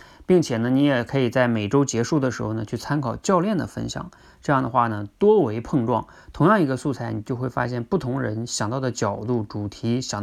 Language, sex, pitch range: Chinese, male, 115-145 Hz